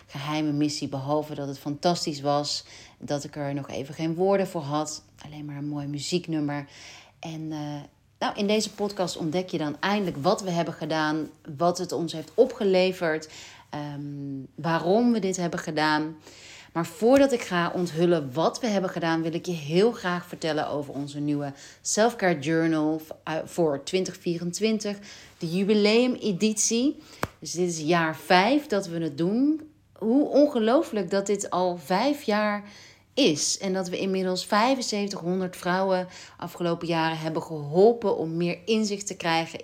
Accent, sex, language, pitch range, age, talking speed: Dutch, female, Dutch, 150-195 Hz, 40-59, 155 wpm